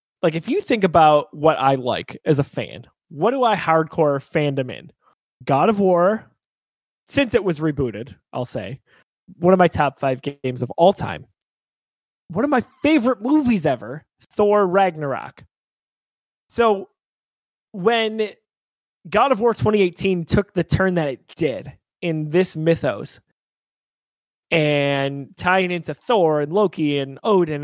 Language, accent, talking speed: English, American, 145 wpm